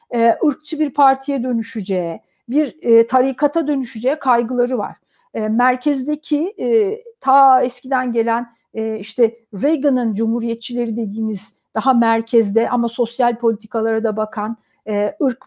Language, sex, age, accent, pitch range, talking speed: Turkish, female, 50-69, native, 230-290 Hz, 95 wpm